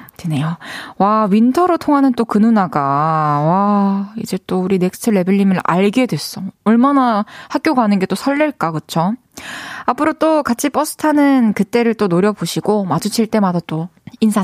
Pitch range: 190-265 Hz